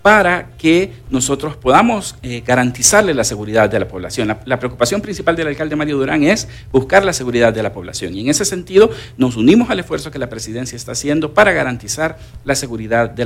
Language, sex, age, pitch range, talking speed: Spanish, male, 50-69, 120-155 Hz, 200 wpm